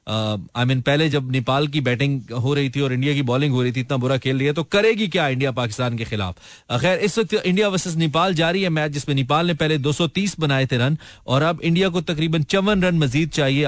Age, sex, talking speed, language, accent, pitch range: 30-49, male, 240 wpm, Hindi, native, 130-170 Hz